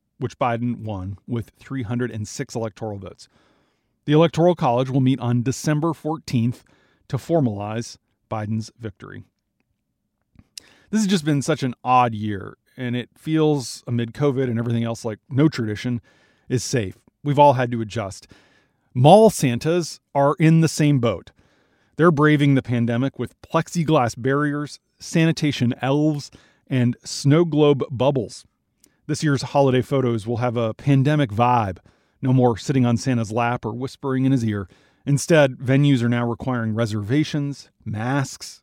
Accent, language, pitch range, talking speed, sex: American, English, 115-145 Hz, 145 wpm, male